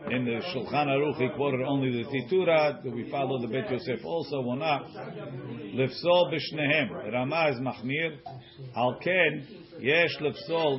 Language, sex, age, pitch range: English, male, 50-69, 125-155 Hz